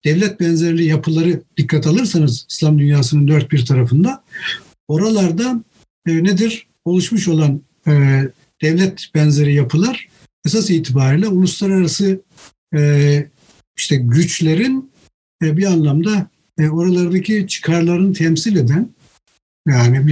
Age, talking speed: 60-79, 100 wpm